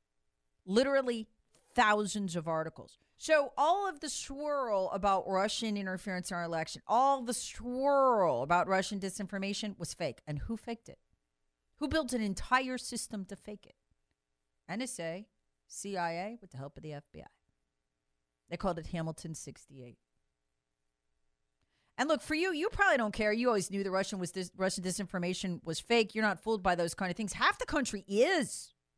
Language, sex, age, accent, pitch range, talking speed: English, female, 40-59, American, 150-240 Hz, 165 wpm